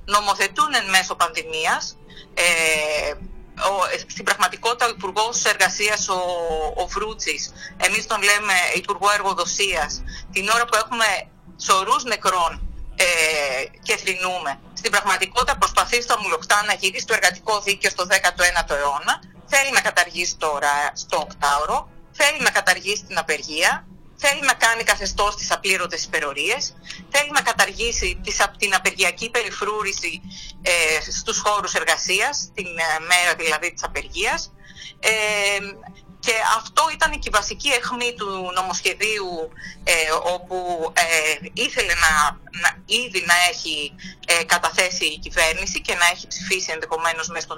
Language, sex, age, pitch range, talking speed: Greek, female, 30-49, 170-215 Hz, 125 wpm